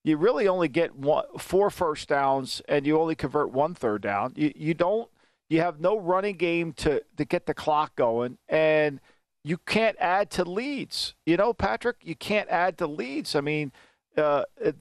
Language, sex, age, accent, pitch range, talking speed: English, male, 50-69, American, 155-205 Hz, 185 wpm